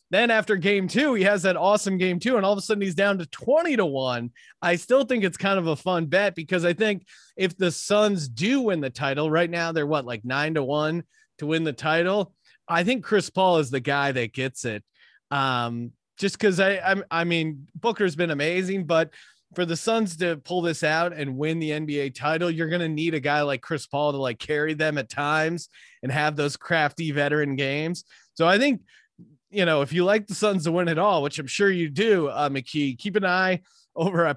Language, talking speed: English, 230 wpm